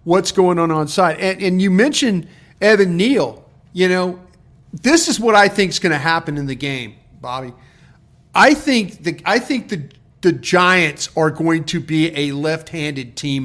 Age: 40-59